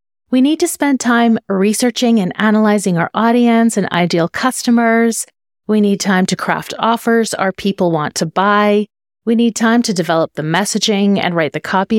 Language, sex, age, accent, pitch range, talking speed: English, female, 30-49, American, 180-245 Hz, 175 wpm